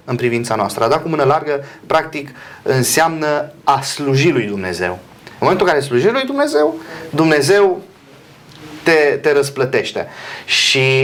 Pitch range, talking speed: 130-170 Hz, 135 wpm